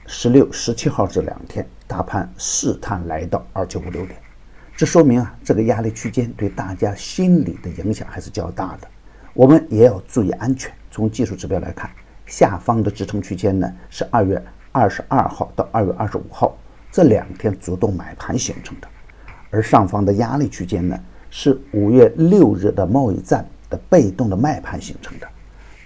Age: 50-69